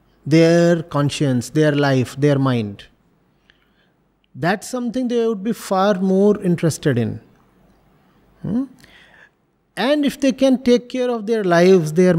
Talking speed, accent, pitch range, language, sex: 130 wpm, Indian, 165-225 Hz, English, male